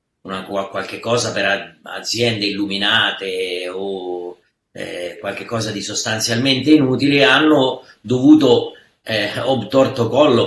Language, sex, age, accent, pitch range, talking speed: Italian, male, 40-59, native, 100-130 Hz, 95 wpm